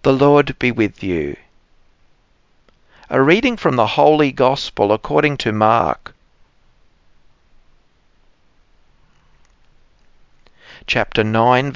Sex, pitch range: male, 105-135 Hz